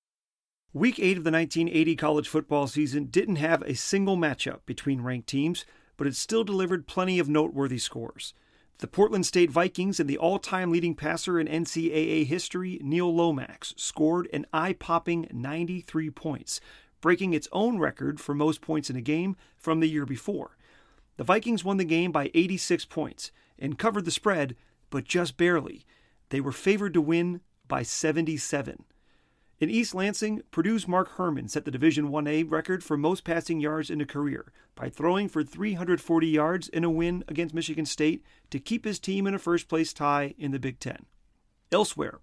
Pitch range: 150-180 Hz